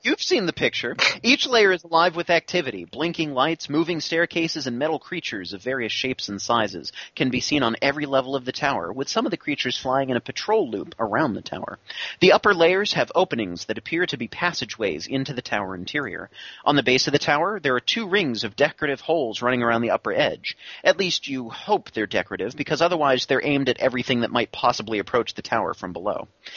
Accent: American